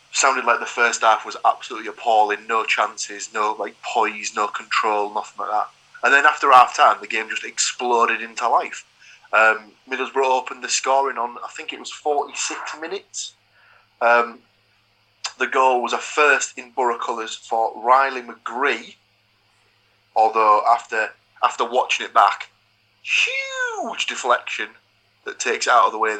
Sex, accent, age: male, British, 20-39